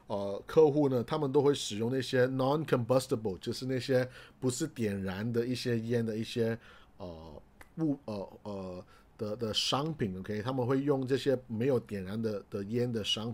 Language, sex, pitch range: Chinese, male, 105-135 Hz